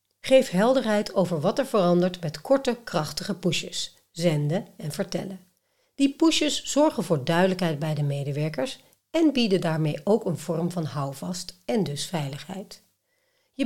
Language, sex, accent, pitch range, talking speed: Dutch, female, Dutch, 155-215 Hz, 145 wpm